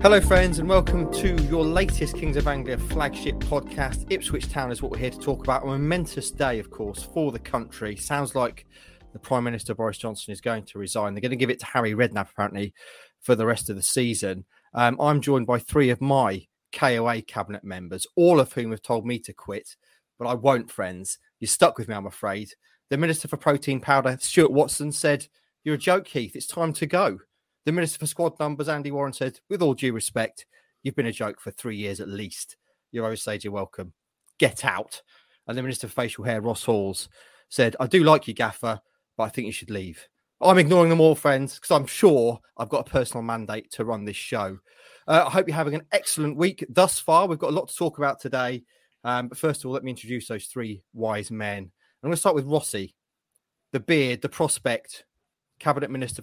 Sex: male